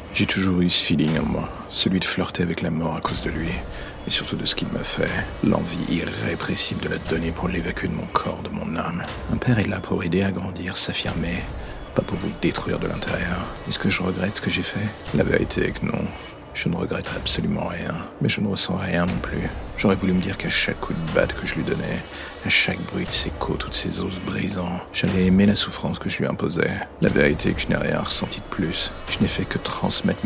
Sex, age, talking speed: male, 60-79, 245 wpm